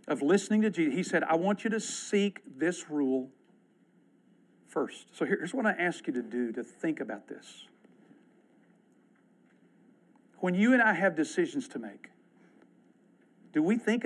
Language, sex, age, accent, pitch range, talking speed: English, male, 50-69, American, 145-215 Hz, 160 wpm